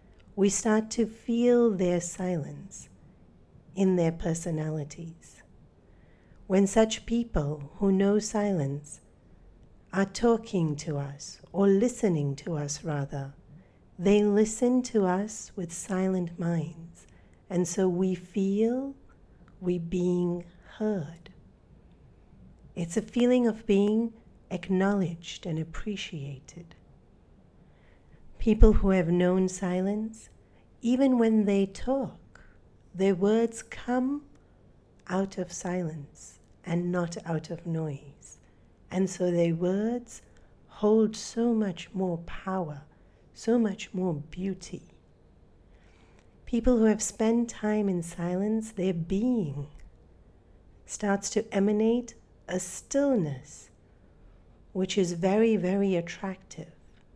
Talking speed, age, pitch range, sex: 105 wpm, 40-59, 165-215 Hz, female